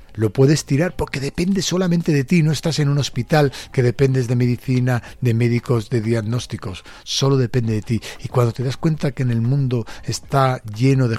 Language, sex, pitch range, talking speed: Spanish, male, 110-145 Hz, 200 wpm